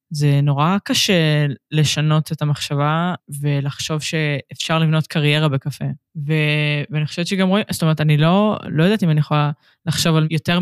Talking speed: 160 wpm